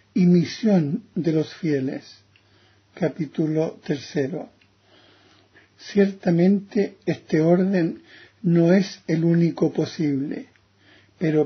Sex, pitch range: male, 150-185 Hz